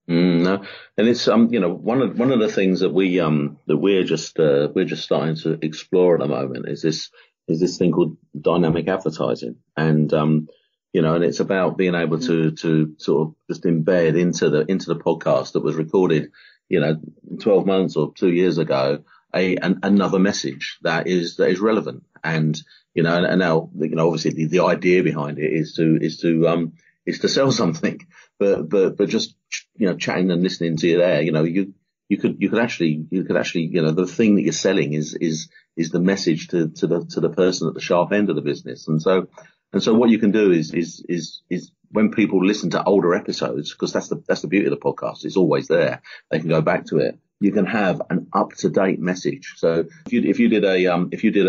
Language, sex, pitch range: English, male, 80-90 Hz